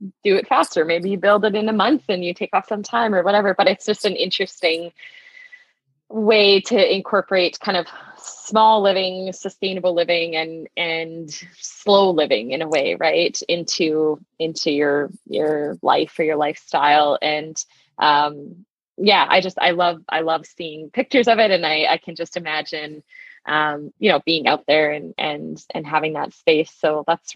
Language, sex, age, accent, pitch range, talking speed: English, female, 20-39, American, 155-205 Hz, 180 wpm